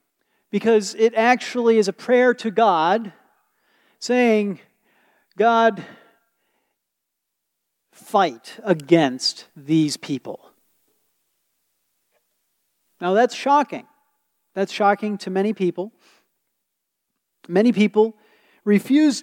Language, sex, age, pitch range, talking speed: English, male, 40-59, 185-235 Hz, 80 wpm